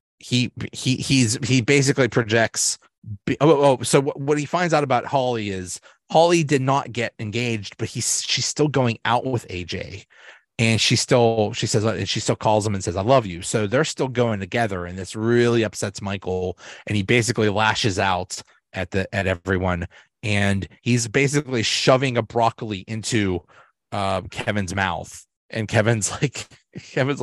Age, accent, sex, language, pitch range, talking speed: 30-49, American, male, English, 95-120 Hz, 170 wpm